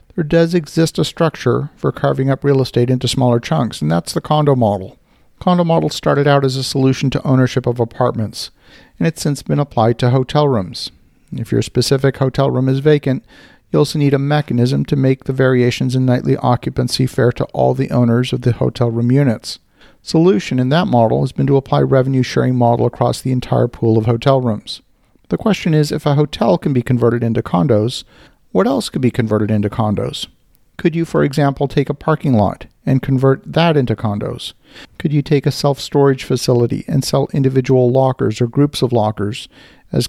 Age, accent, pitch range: 50-69, American, 120-145 Hz